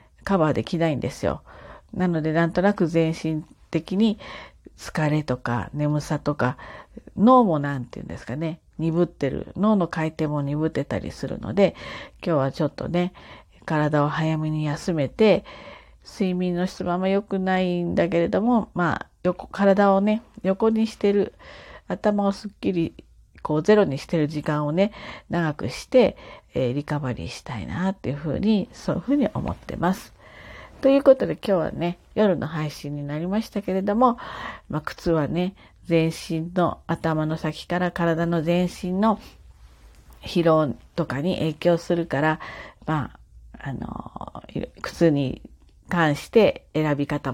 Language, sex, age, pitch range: Japanese, female, 40-59, 145-190 Hz